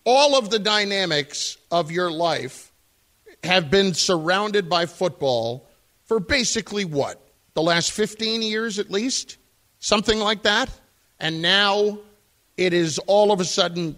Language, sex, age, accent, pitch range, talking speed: English, male, 50-69, American, 150-200 Hz, 135 wpm